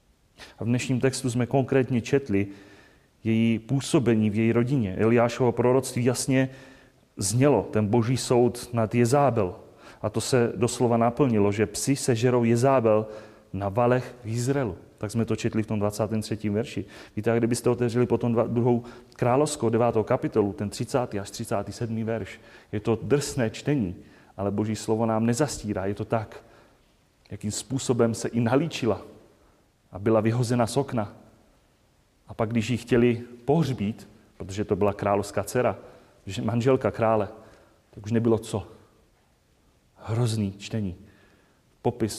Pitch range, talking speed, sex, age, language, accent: 110-130 Hz, 140 wpm, male, 30-49, Czech, native